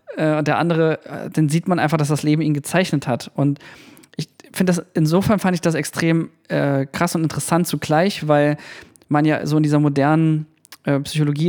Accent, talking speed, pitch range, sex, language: German, 190 wpm, 150-175 Hz, male, German